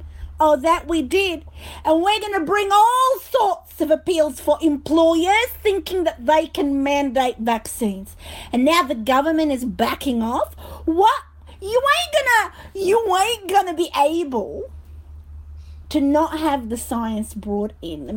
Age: 50-69